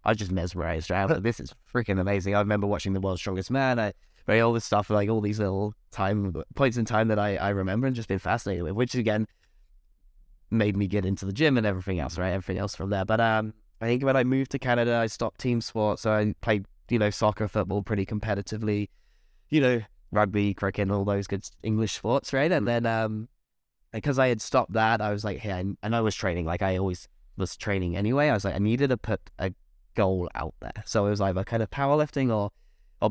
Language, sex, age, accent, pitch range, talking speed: English, male, 10-29, British, 95-115 Hz, 235 wpm